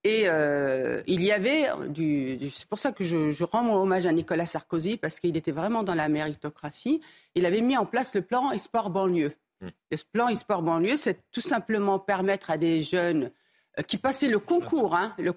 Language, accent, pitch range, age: French, French, 165-230 Hz, 50-69